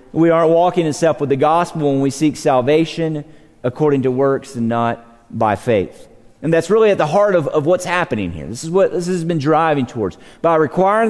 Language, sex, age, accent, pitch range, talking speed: English, male, 40-59, American, 130-185 Hz, 210 wpm